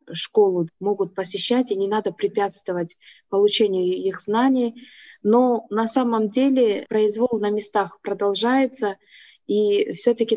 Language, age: Russian, 20-39